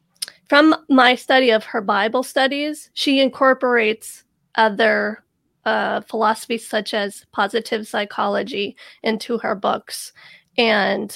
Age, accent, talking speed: 30-49, American, 110 wpm